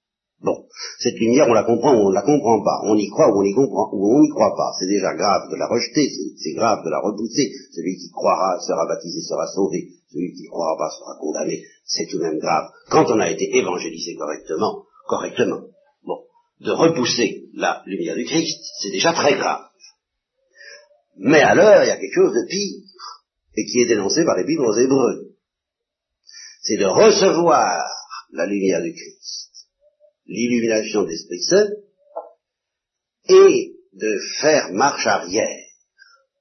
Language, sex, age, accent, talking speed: French, male, 60-79, French, 170 wpm